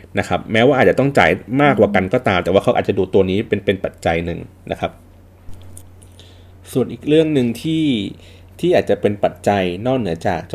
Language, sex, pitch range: Thai, male, 90-120 Hz